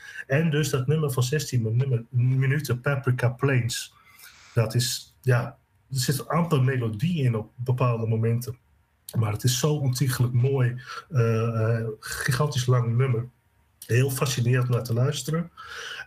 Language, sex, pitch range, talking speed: Dutch, male, 120-135 Hz, 125 wpm